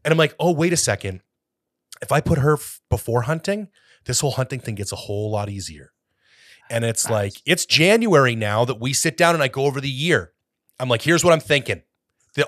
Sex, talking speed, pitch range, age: male, 220 wpm, 105-145 Hz, 30-49